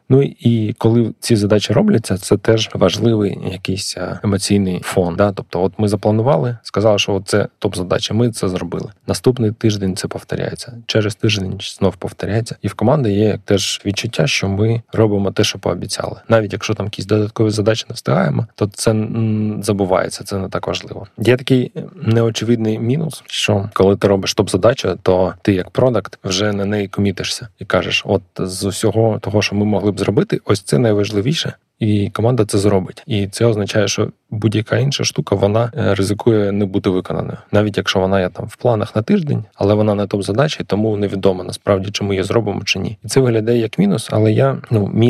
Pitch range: 100-115 Hz